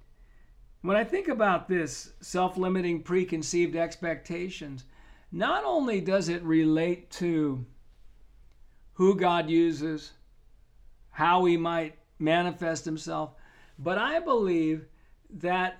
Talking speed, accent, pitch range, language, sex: 100 wpm, American, 160-190 Hz, English, male